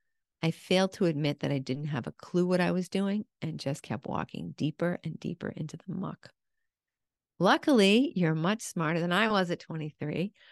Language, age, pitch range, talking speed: English, 50-69, 155-190 Hz, 190 wpm